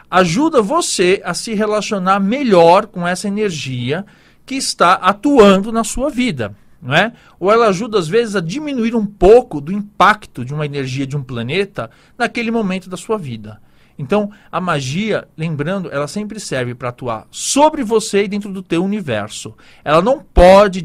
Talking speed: 165 wpm